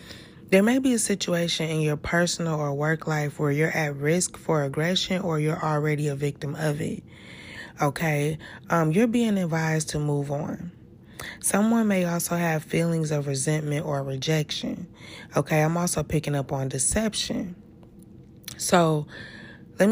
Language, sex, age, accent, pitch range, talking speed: English, female, 20-39, American, 150-175 Hz, 150 wpm